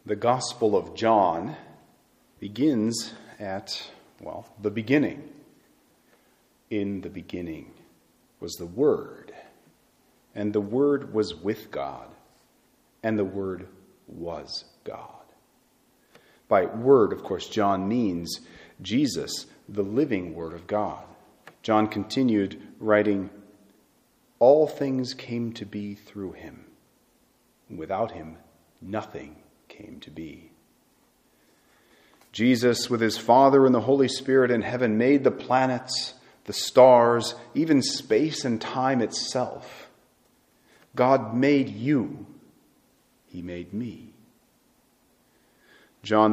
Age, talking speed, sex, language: 40-59, 105 wpm, male, English